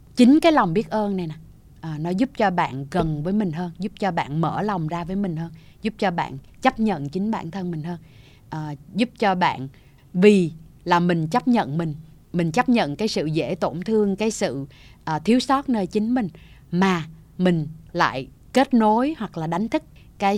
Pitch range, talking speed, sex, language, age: 160-210 Hz, 200 wpm, female, Vietnamese, 20-39